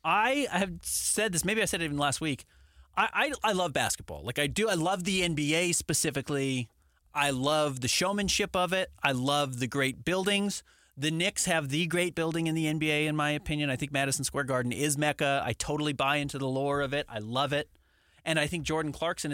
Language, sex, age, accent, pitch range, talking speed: English, male, 30-49, American, 120-165 Hz, 215 wpm